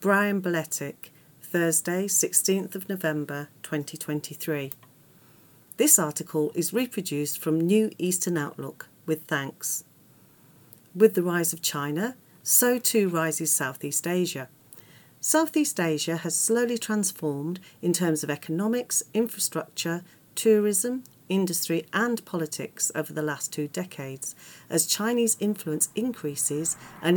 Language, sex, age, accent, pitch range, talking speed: English, female, 40-59, British, 150-185 Hz, 115 wpm